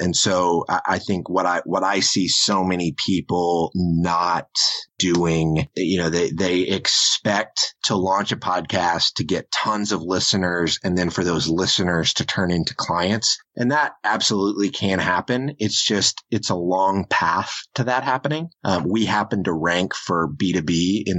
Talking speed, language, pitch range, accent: 165 wpm, English, 85-95 Hz, American